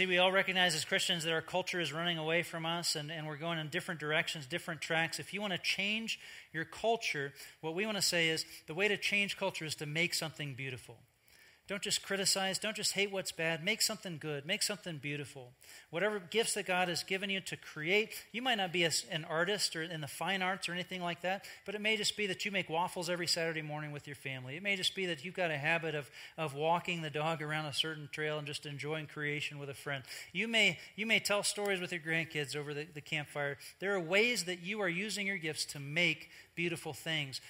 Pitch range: 150-195 Hz